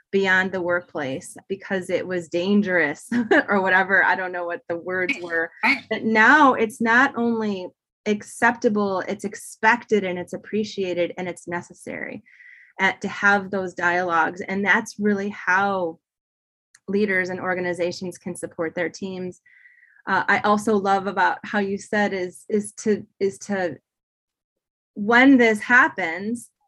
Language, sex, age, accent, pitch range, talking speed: English, female, 20-39, American, 185-225 Hz, 135 wpm